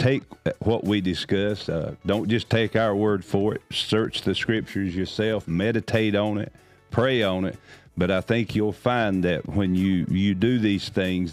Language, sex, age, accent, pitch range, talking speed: English, male, 50-69, American, 95-110 Hz, 180 wpm